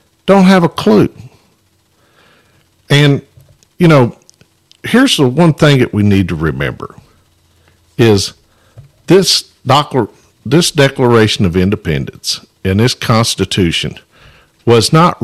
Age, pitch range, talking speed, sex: 50-69, 90-125 Hz, 110 wpm, male